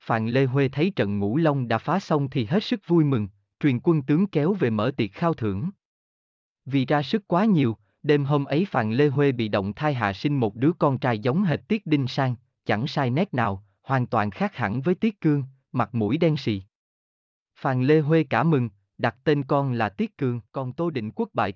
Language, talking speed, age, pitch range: Vietnamese, 225 wpm, 20-39, 110-155 Hz